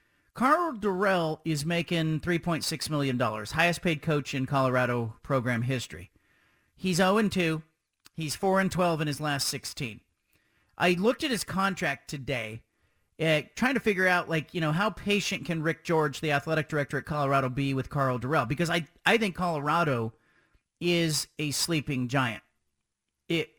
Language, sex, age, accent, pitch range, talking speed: English, male, 40-59, American, 135-180 Hz, 150 wpm